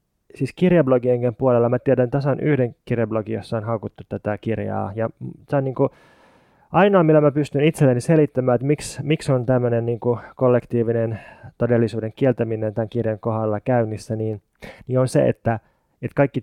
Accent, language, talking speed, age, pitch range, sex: native, Finnish, 155 wpm, 20-39, 115-135 Hz, male